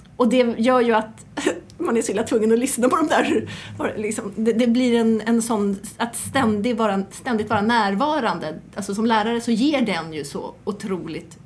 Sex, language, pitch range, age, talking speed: female, Swedish, 200-235 Hz, 30-49, 180 wpm